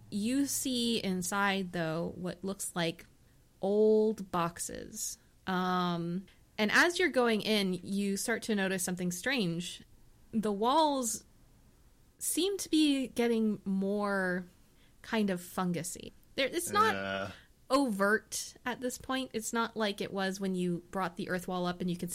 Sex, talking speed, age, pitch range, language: female, 140 wpm, 20-39, 170-205 Hz, English